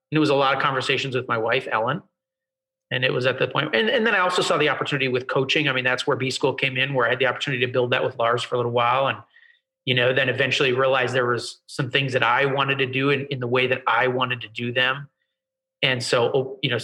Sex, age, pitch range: male, 30-49, 125-160 Hz